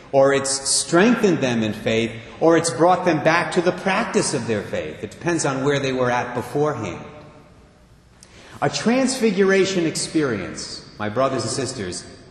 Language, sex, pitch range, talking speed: English, male, 115-175 Hz, 155 wpm